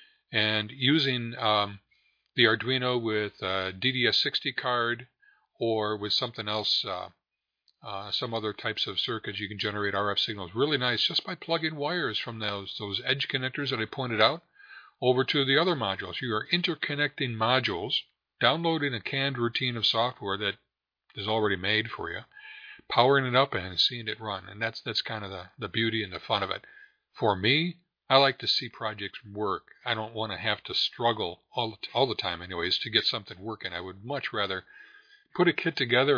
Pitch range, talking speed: 105-145 Hz, 185 wpm